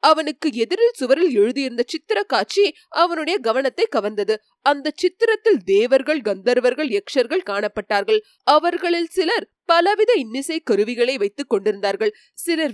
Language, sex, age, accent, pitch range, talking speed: Tamil, female, 30-49, native, 245-410 Hz, 110 wpm